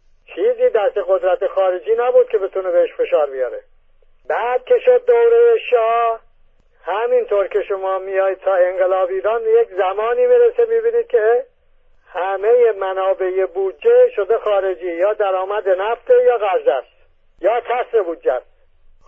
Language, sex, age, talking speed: English, male, 50-69, 130 wpm